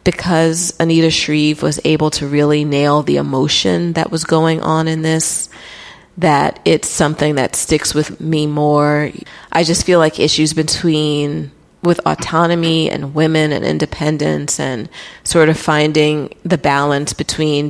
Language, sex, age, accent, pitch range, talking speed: English, female, 30-49, American, 145-165 Hz, 145 wpm